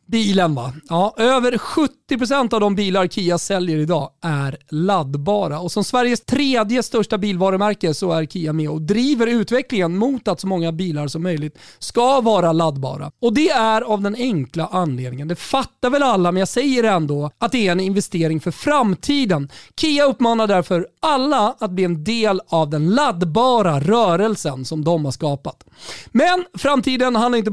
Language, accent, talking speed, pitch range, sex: Swedish, native, 170 wpm, 165-235 Hz, male